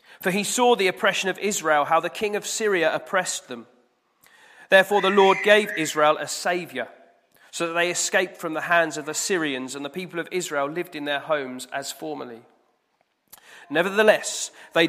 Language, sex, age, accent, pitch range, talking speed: English, male, 40-59, British, 140-185 Hz, 175 wpm